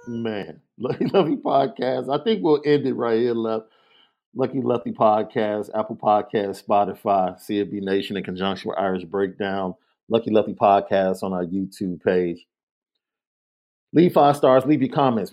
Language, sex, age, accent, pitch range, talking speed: English, male, 40-59, American, 110-135 Hz, 150 wpm